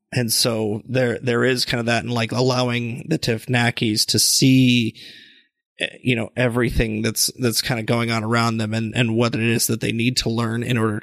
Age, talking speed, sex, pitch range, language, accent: 30-49, 205 wpm, male, 115-130 Hz, English, American